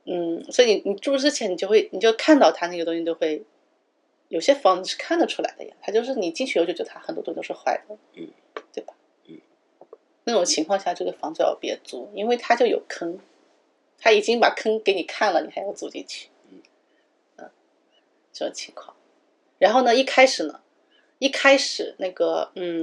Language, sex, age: Chinese, female, 30-49